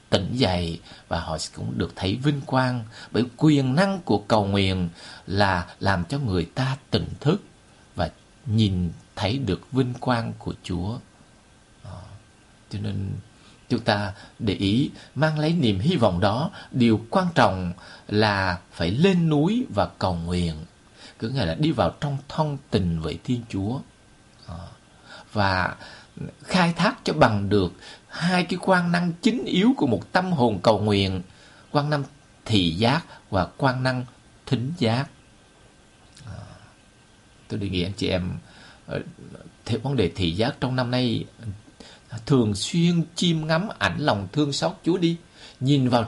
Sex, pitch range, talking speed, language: male, 105-145 Hz, 150 wpm, Vietnamese